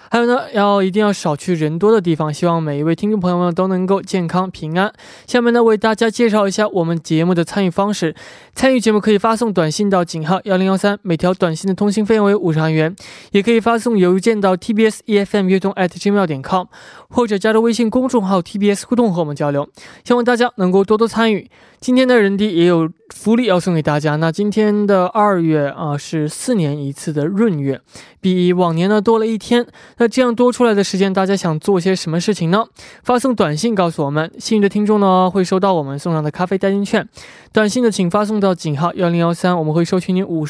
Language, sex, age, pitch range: Korean, male, 20-39, 170-215 Hz